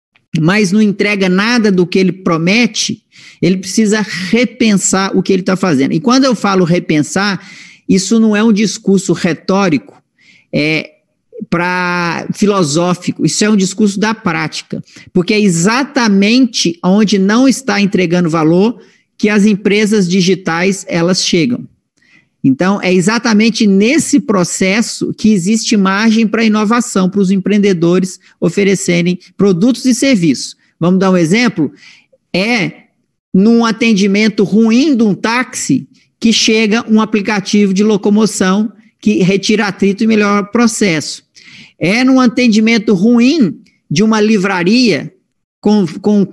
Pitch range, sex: 185-225 Hz, male